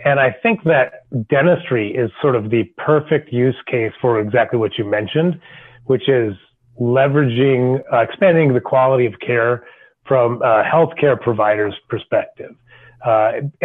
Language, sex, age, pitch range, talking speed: English, male, 30-49, 120-145 Hz, 140 wpm